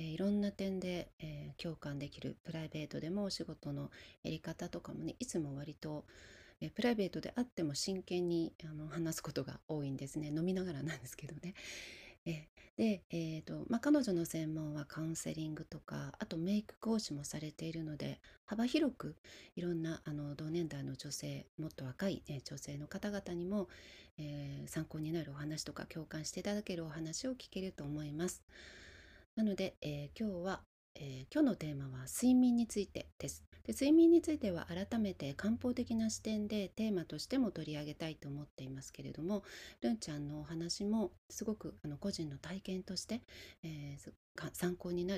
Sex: female